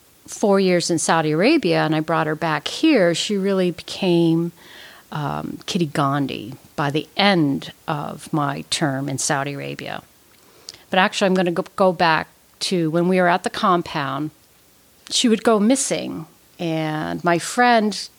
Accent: American